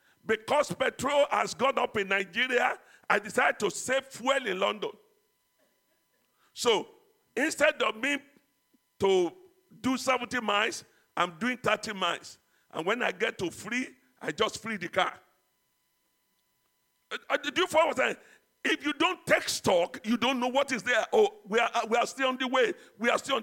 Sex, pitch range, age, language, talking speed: male, 240-330 Hz, 50-69, English, 180 wpm